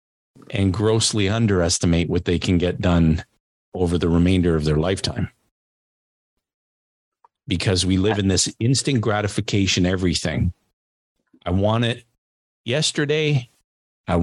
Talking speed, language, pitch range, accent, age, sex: 115 wpm, English, 90-115 Hz, American, 40-59, male